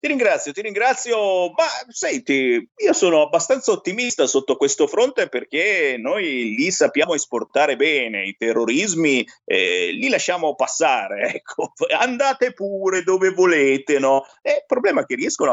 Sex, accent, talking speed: male, native, 140 wpm